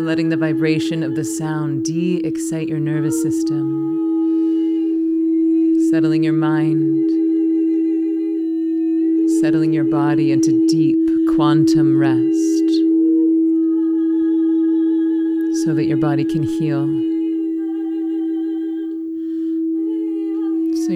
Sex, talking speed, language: female, 75 wpm, English